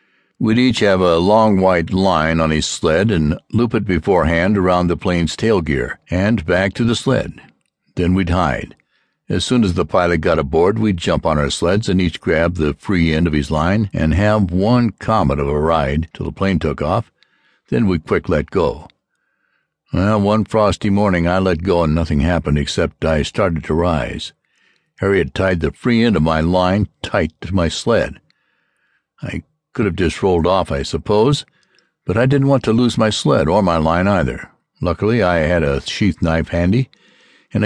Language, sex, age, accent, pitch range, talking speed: English, male, 60-79, American, 85-110 Hz, 190 wpm